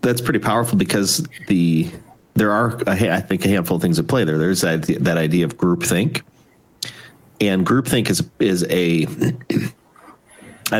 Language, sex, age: English, male, 30-49